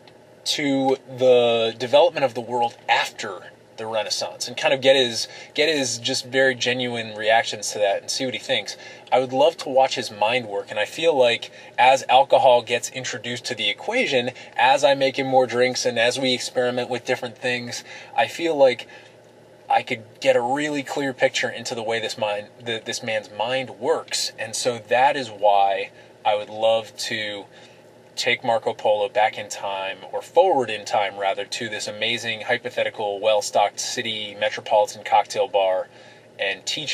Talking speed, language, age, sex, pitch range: 175 wpm, English, 20-39, male, 105-130 Hz